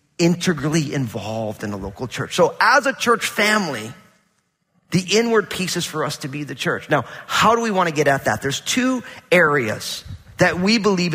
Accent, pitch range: American, 140-190 Hz